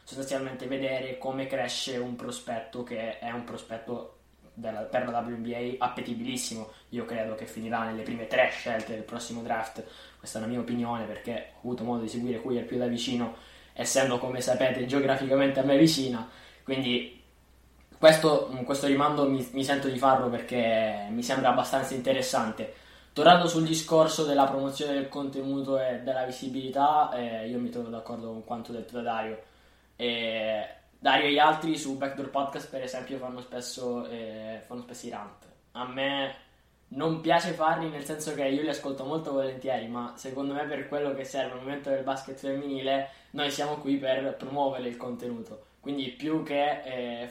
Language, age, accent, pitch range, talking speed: Italian, 10-29, native, 120-135 Hz, 175 wpm